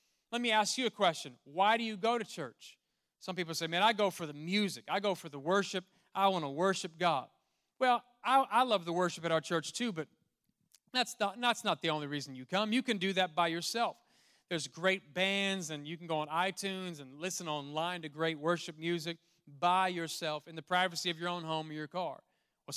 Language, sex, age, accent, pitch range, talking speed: English, male, 30-49, American, 170-220 Hz, 225 wpm